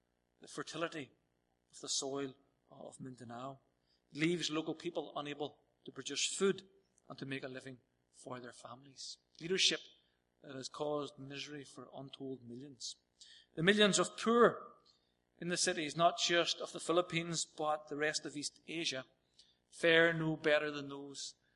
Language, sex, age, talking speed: English, male, 40-59, 150 wpm